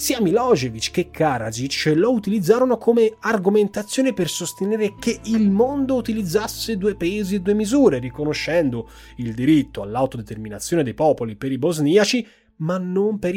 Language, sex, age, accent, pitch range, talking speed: Italian, male, 30-49, native, 120-180 Hz, 140 wpm